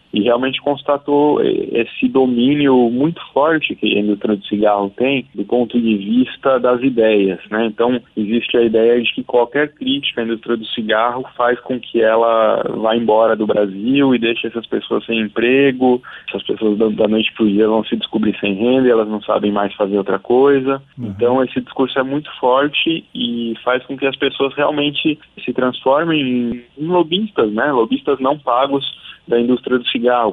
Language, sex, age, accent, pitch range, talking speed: Portuguese, male, 20-39, Brazilian, 110-135 Hz, 180 wpm